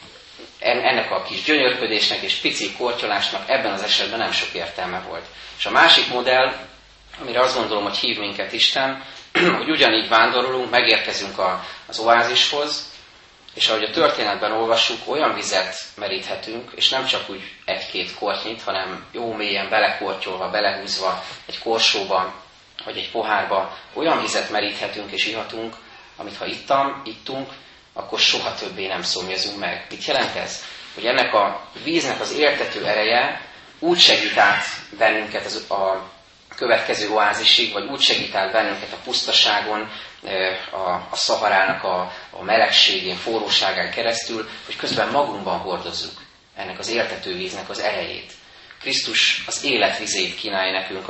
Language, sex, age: Hungarian, male, 30-49